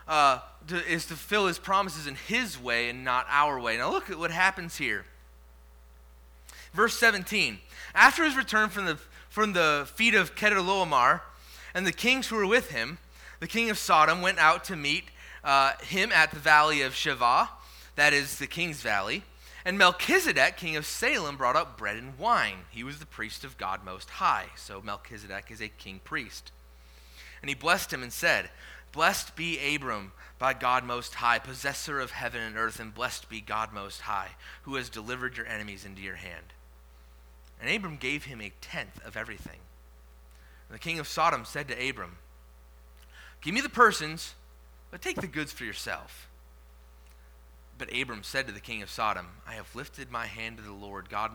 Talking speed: 185 wpm